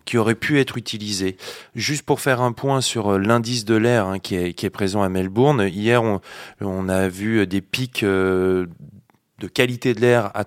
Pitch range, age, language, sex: 105-125 Hz, 20-39, French, male